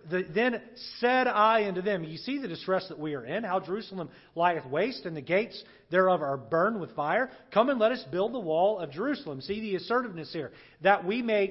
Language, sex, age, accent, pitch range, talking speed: English, male, 40-59, American, 180-240 Hz, 220 wpm